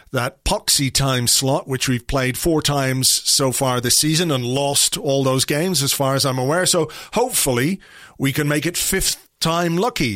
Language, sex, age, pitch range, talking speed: English, male, 40-59, 125-165 Hz, 190 wpm